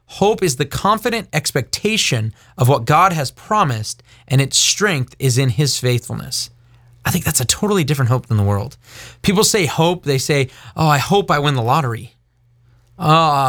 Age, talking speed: 30-49, 180 wpm